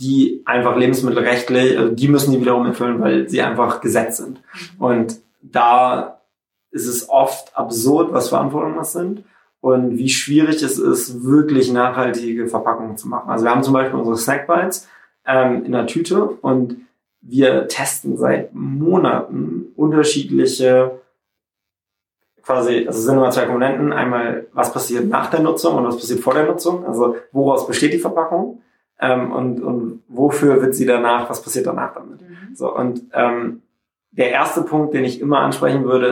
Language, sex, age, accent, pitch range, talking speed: German, male, 20-39, German, 120-140 Hz, 160 wpm